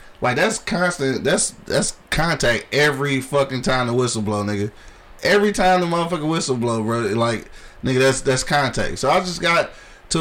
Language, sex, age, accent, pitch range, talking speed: English, male, 20-39, American, 115-160 Hz, 175 wpm